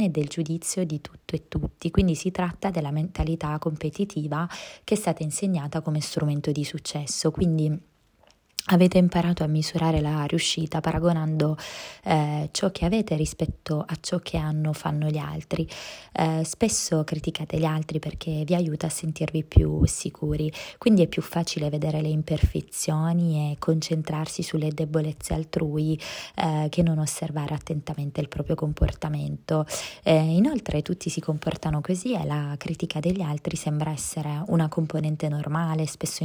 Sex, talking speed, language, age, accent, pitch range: female, 150 wpm, Italian, 20-39, native, 150-170 Hz